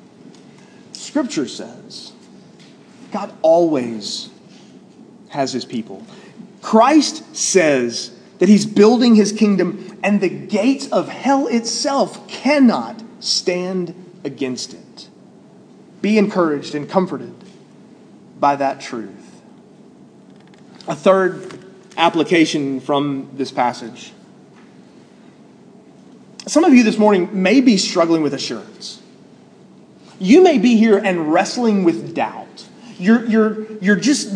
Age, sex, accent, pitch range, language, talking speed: 30-49, male, American, 190-230 Hz, English, 100 wpm